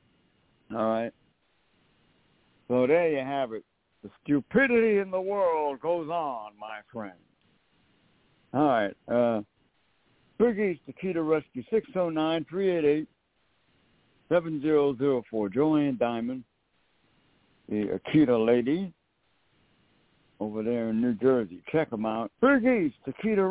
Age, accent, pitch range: 60-79, American, 120-160 Hz